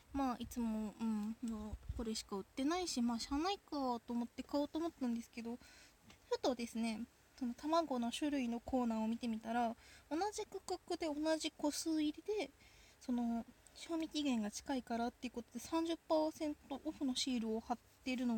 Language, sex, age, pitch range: Japanese, female, 20-39, 225-310 Hz